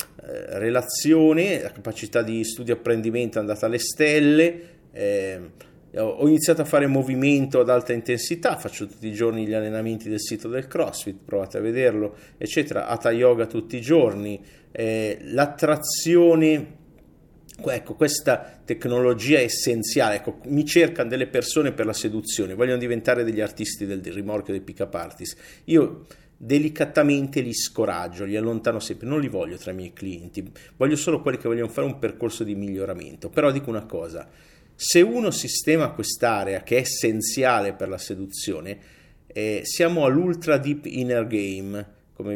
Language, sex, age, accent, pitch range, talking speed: Italian, male, 50-69, native, 105-145 Hz, 155 wpm